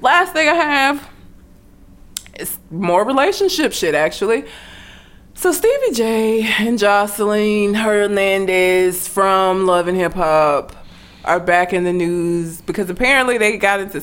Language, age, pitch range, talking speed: English, 20-39, 155-210 Hz, 125 wpm